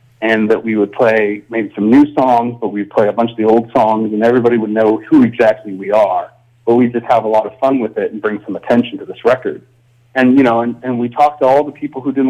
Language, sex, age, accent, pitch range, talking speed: English, male, 40-59, American, 110-130 Hz, 275 wpm